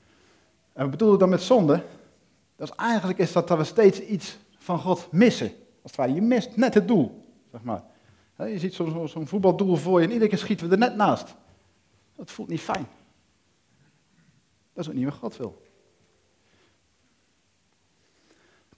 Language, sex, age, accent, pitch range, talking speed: Dutch, male, 50-69, Dutch, 145-200 Hz, 165 wpm